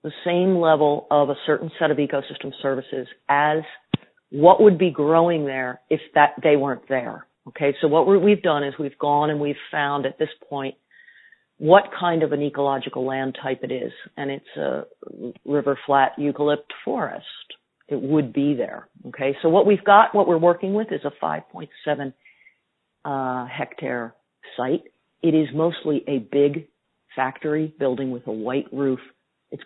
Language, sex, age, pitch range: English, female, 50-69, 140-175 Hz